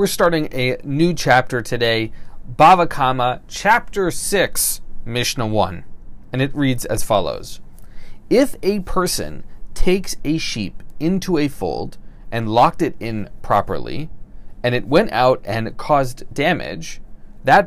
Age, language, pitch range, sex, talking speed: 30-49, English, 110-155 Hz, male, 130 wpm